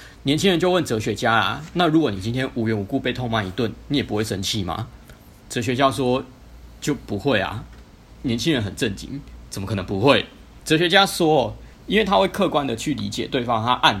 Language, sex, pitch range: Chinese, male, 105-135 Hz